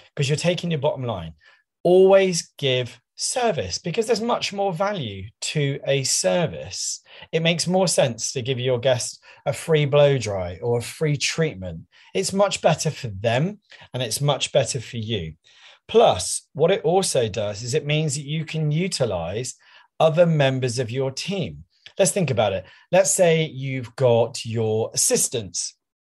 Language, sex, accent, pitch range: English, male, British, 115-160 Hz